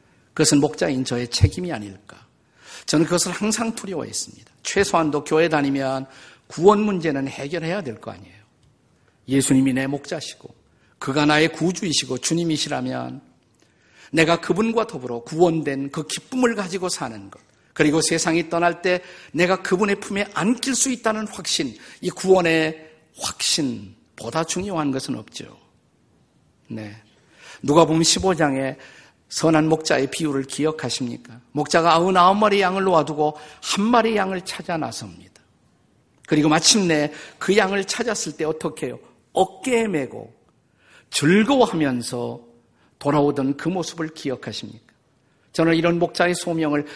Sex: male